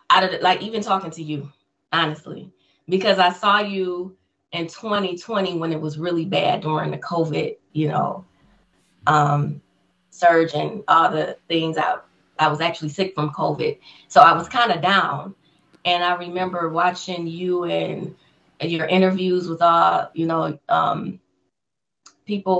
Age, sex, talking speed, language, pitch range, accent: 20-39, female, 150 wpm, English, 165-195 Hz, American